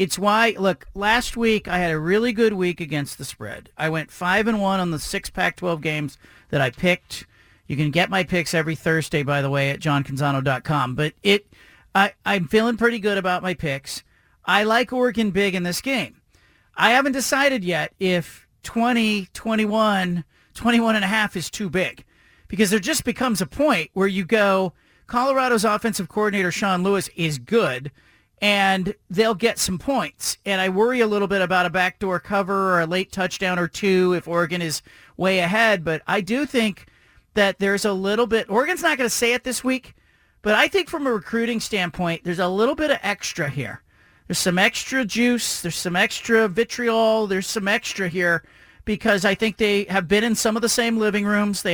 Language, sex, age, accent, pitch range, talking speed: English, male, 40-59, American, 180-230 Hz, 195 wpm